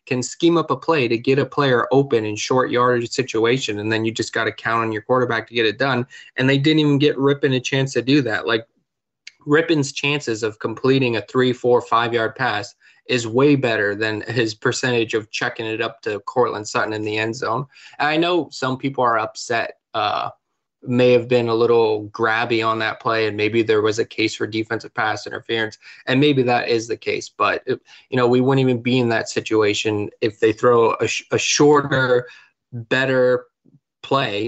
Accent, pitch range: American, 115-140 Hz